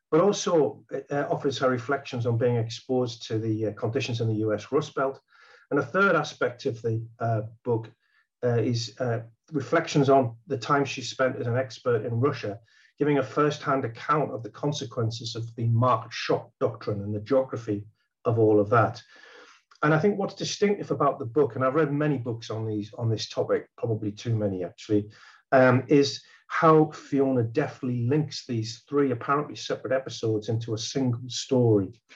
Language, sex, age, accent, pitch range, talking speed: English, male, 50-69, British, 115-145 Hz, 175 wpm